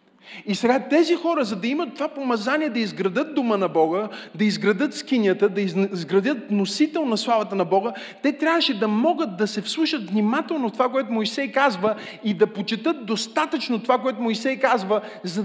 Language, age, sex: Bulgarian, 30-49, male